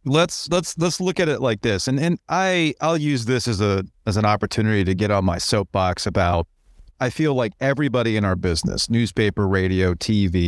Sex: male